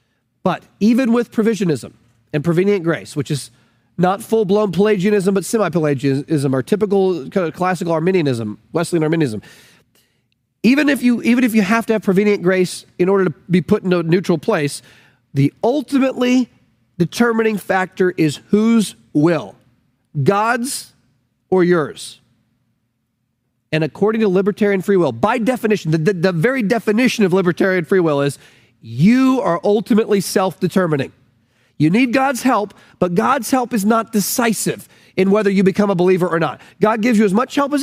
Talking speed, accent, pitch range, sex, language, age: 155 wpm, American, 155-225 Hz, male, English, 40-59